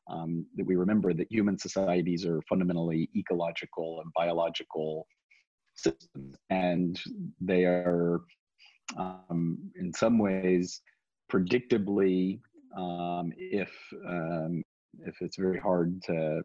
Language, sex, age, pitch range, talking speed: English, male, 40-59, 85-95 Hz, 105 wpm